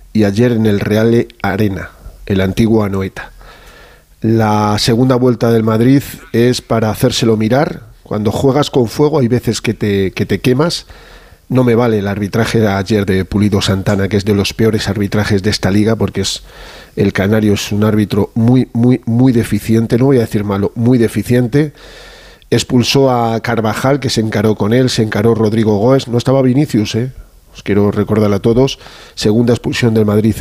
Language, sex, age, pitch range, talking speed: Spanish, male, 40-59, 105-120 Hz, 180 wpm